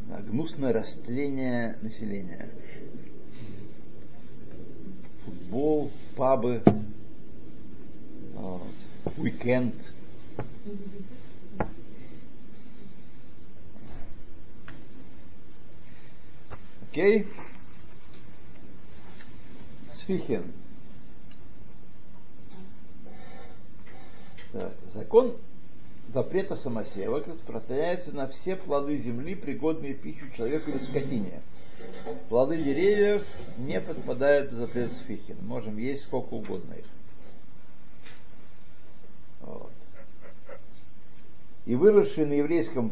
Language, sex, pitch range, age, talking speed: Russian, male, 110-150 Hz, 60-79, 55 wpm